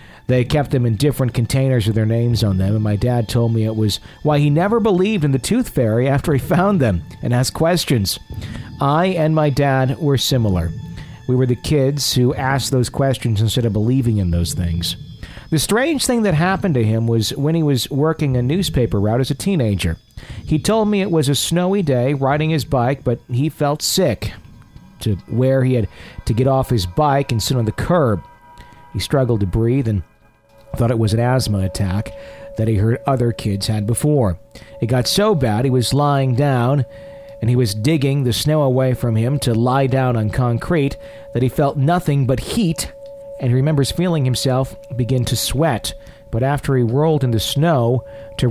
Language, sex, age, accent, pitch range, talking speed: English, male, 50-69, American, 115-145 Hz, 200 wpm